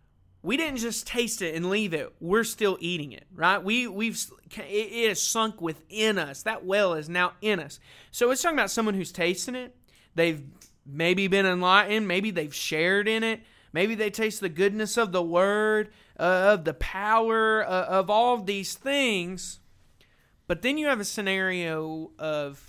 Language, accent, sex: English, American, male